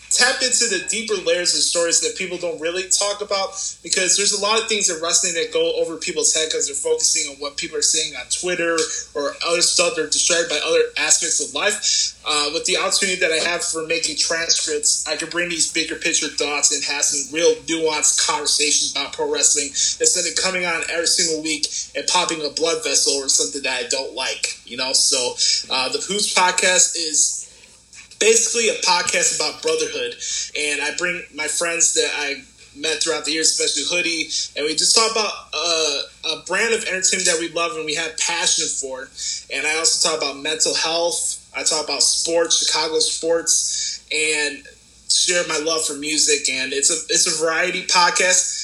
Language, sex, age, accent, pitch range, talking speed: English, male, 20-39, American, 160-225 Hz, 195 wpm